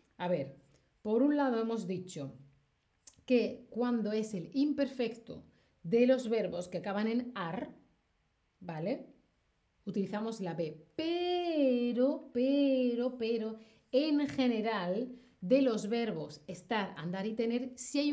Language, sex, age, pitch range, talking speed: Spanish, female, 30-49, 180-260 Hz, 125 wpm